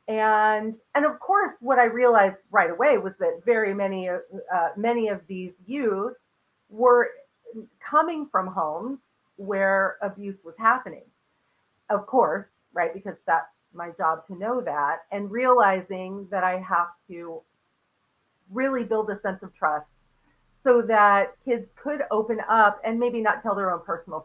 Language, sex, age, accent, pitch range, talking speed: English, female, 40-59, American, 185-245 Hz, 150 wpm